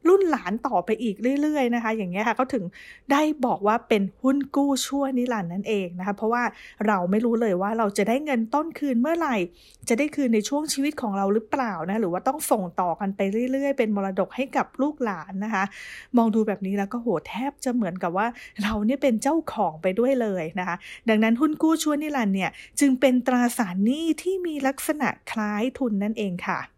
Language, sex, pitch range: English, female, 210-275 Hz